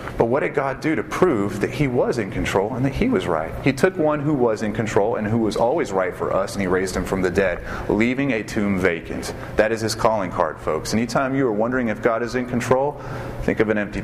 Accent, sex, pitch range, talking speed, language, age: American, male, 100-130 Hz, 260 wpm, English, 30-49